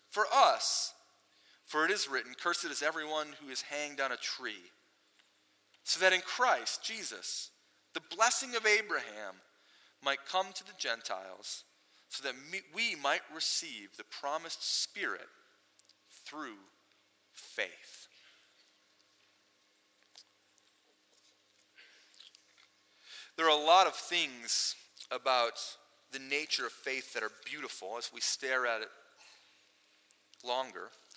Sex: male